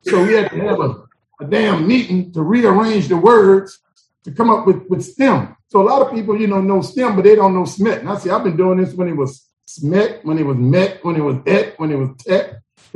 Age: 40-59